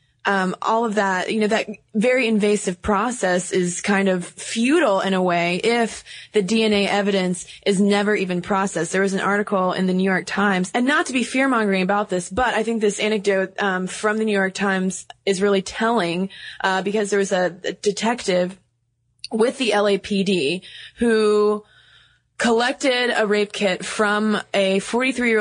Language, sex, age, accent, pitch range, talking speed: English, female, 20-39, American, 185-210 Hz, 175 wpm